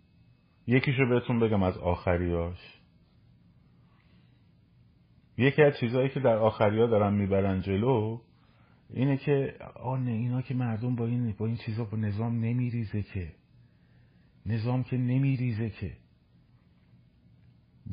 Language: Persian